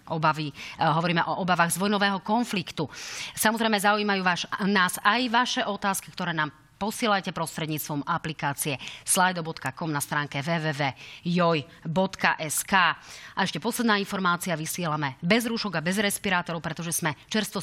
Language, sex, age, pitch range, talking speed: Slovak, female, 30-49, 165-210 Hz, 125 wpm